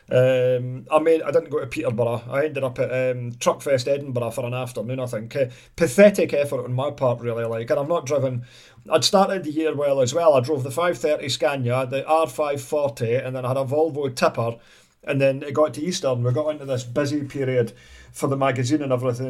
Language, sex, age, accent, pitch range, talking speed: English, male, 40-59, British, 125-150 Hz, 225 wpm